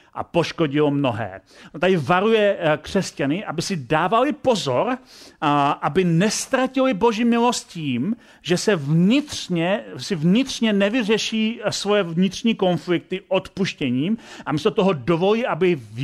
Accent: native